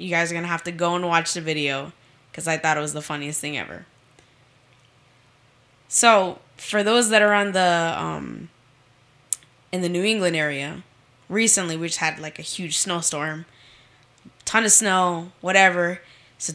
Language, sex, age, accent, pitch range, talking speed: English, female, 10-29, American, 145-205 Hz, 170 wpm